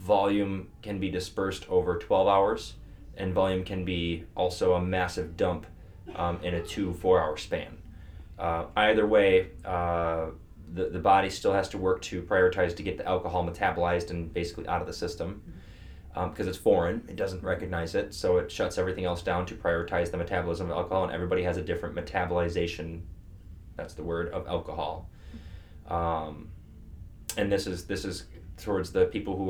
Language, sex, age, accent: English, male, 20-39, American